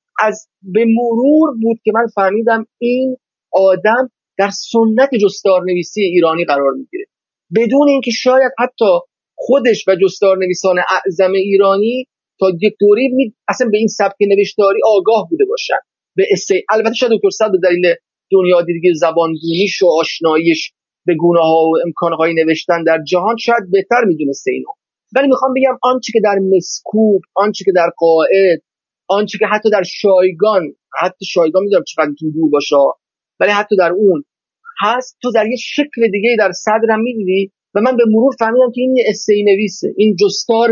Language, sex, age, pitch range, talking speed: Persian, male, 30-49, 185-235 Hz, 170 wpm